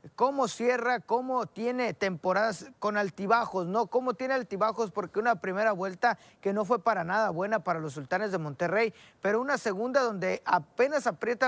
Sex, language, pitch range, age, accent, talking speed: male, Spanish, 190-255 Hz, 40-59, Mexican, 165 wpm